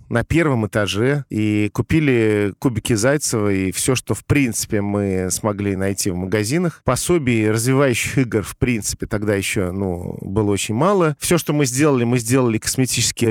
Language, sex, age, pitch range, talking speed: Russian, male, 40-59, 110-145 Hz, 160 wpm